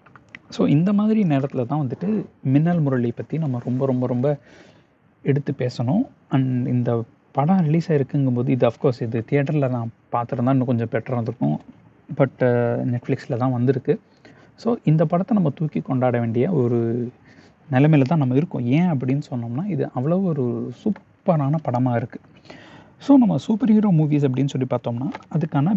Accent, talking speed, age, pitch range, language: native, 150 wpm, 30-49, 125-155 Hz, Tamil